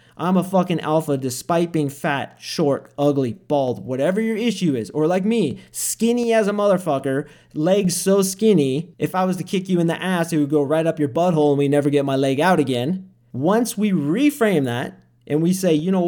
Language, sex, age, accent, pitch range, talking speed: English, male, 30-49, American, 135-170 Hz, 215 wpm